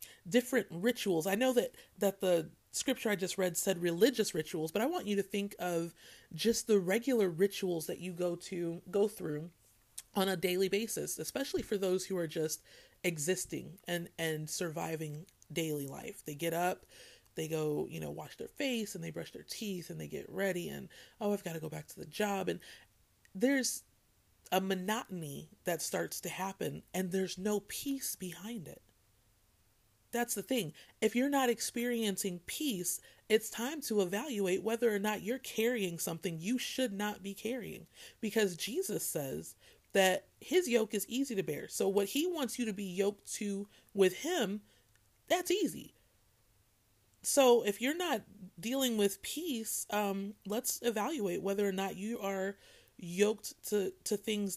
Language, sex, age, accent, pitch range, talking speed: English, female, 30-49, American, 175-225 Hz, 170 wpm